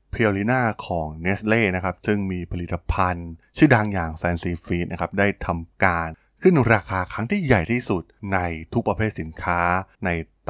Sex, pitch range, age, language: male, 90-115 Hz, 20-39, Thai